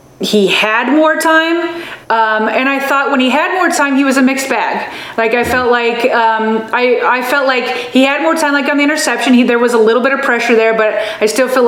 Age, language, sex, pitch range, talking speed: 30-49, English, female, 230-295 Hz, 240 wpm